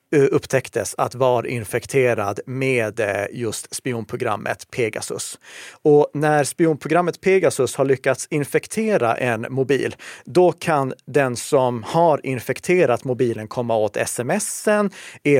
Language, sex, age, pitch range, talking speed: Swedish, male, 30-49, 120-145 Hz, 110 wpm